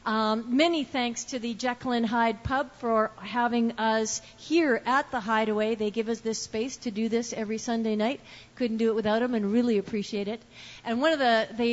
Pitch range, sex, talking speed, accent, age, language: 210-245 Hz, female, 210 wpm, American, 50-69, English